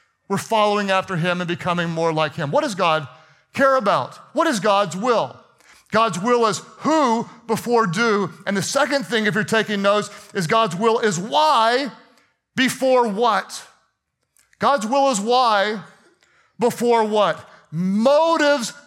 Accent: American